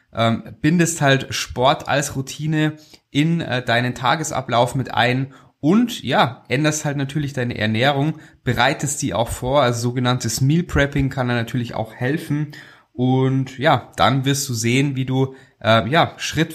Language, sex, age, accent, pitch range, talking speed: German, male, 20-39, German, 120-150 Hz, 150 wpm